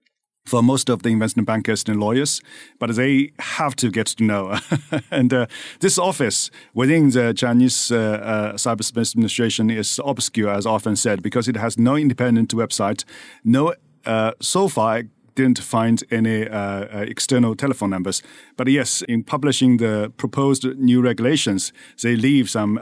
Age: 40-59